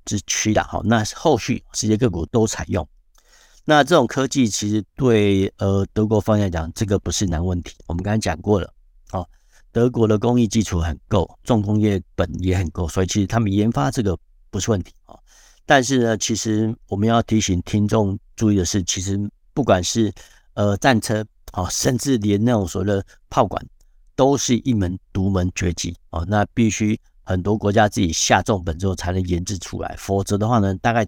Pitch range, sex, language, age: 90-115 Hz, male, Chinese, 60-79